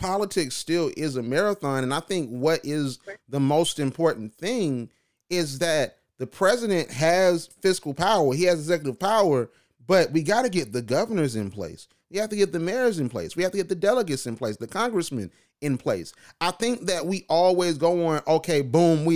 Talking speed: 200 wpm